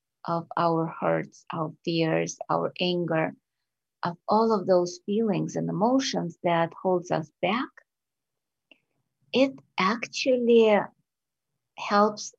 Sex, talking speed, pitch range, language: female, 100 wpm, 180-220 Hz, English